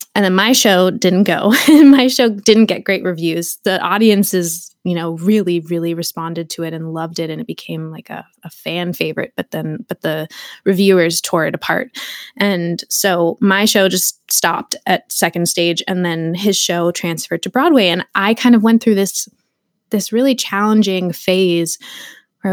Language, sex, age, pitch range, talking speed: English, female, 20-39, 170-205 Hz, 185 wpm